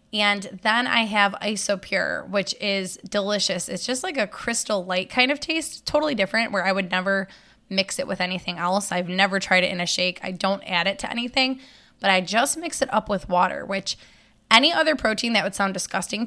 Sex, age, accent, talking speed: female, 10-29, American, 210 wpm